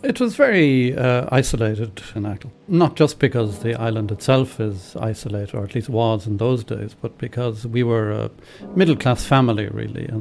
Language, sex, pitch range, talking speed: English, male, 105-125 Hz, 180 wpm